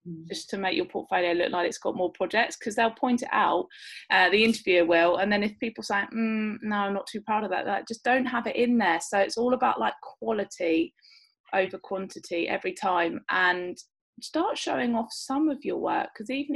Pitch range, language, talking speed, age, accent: 180-230 Hz, English, 215 wpm, 20-39, British